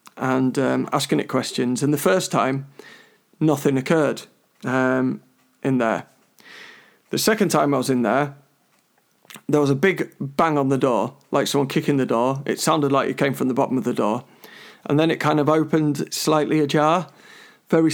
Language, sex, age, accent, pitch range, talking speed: English, male, 40-59, British, 130-155 Hz, 180 wpm